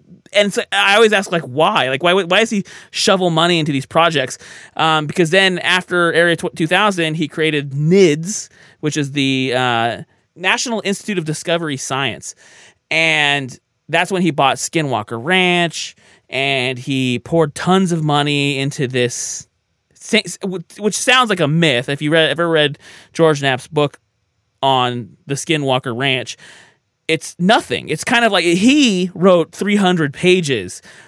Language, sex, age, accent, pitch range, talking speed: English, male, 30-49, American, 135-180 Hz, 155 wpm